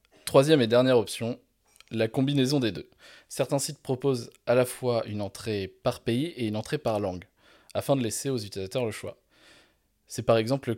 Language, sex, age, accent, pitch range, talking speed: French, male, 20-39, French, 105-135 Hz, 190 wpm